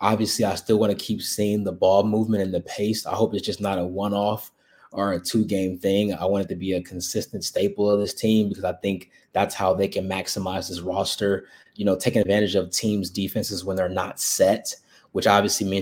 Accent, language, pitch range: American, English, 100-115 Hz